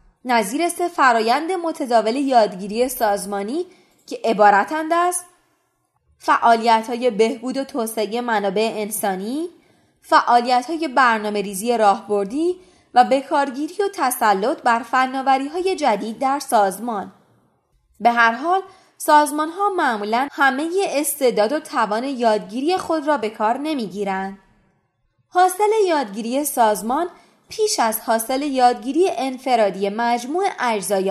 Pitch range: 225-325 Hz